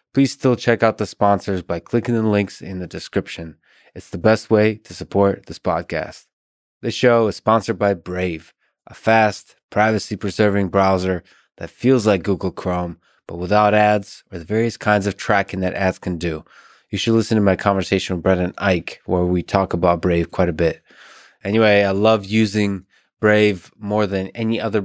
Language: English